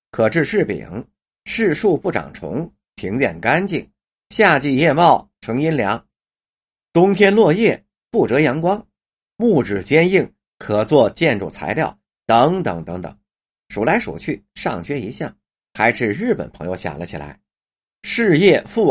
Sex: male